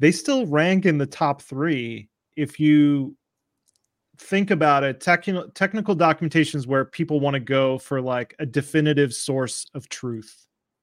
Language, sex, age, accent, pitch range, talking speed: English, male, 30-49, American, 130-155 Hz, 155 wpm